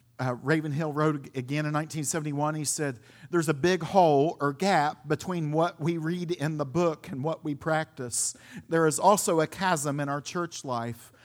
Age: 50-69